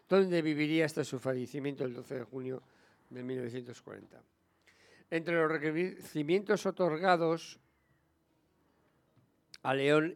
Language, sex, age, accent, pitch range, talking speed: English, male, 60-79, Spanish, 140-175 Hz, 100 wpm